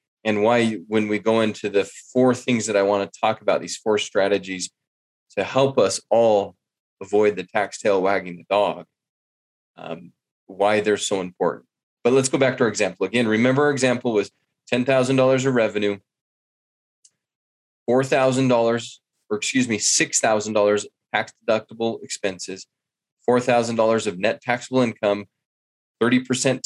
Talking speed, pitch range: 140 wpm, 100-130 Hz